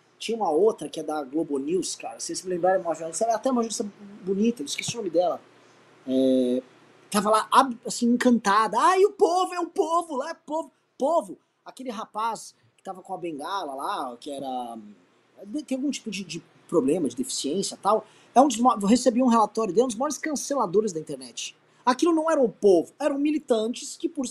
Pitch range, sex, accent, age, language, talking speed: 185-275 Hz, male, Brazilian, 20-39, Portuguese, 200 wpm